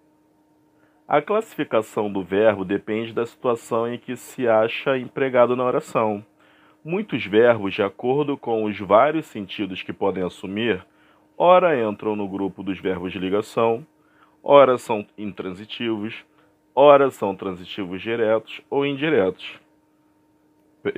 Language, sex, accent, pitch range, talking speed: Portuguese, male, Brazilian, 100-150 Hz, 125 wpm